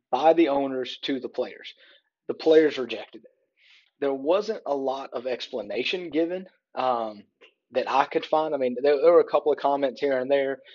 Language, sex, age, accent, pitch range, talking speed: English, male, 30-49, American, 125-155 Hz, 190 wpm